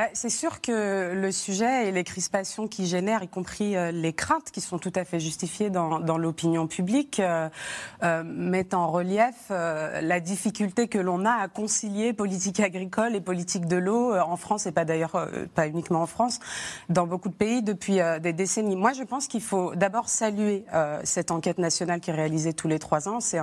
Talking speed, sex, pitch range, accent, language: 190 wpm, female, 170-210 Hz, French, French